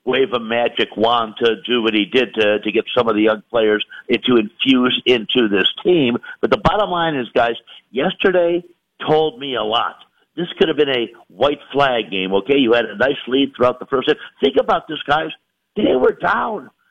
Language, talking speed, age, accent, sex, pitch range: English, 200 wpm, 50-69, American, male, 125-190 Hz